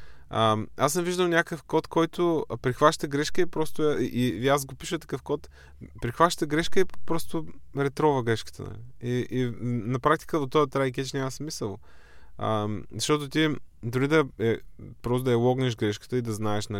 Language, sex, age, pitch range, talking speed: Bulgarian, male, 20-39, 110-140 Hz, 170 wpm